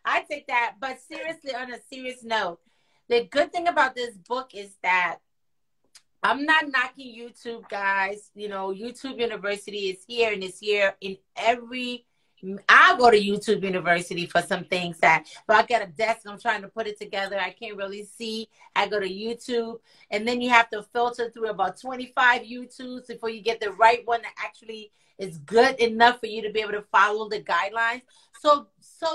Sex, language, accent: female, English, American